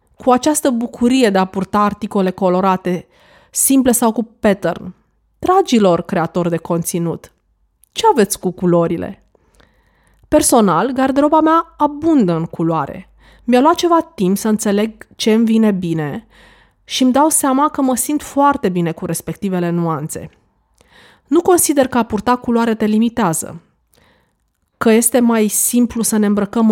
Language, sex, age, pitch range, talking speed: Romanian, female, 20-39, 185-255 Hz, 140 wpm